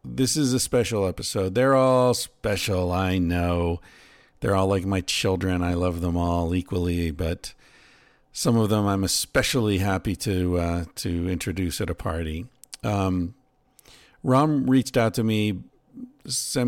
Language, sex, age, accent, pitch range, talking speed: English, male, 50-69, American, 90-110 Hz, 150 wpm